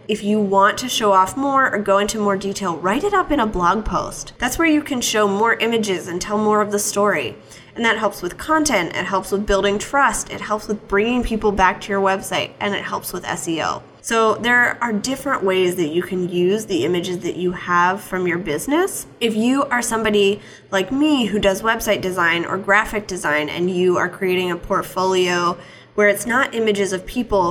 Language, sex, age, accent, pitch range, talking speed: English, female, 10-29, American, 185-225 Hz, 215 wpm